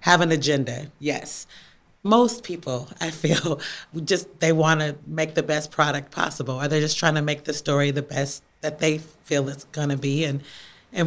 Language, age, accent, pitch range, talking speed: English, 30-49, American, 150-180 Hz, 190 wpm